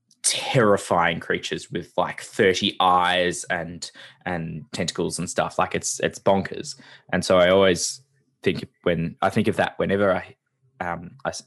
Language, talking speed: English, 145 wpm